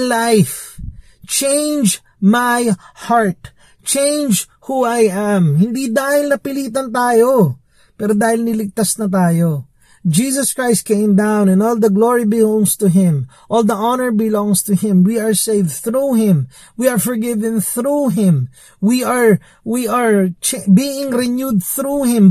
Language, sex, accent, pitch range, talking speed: Filipino, male, native, 170-230 Hz, 140 wpm